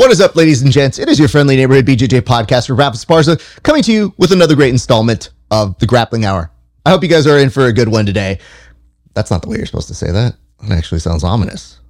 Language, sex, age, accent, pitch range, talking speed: English, male, 30-49, American, 100-135 Hz, 255 wpm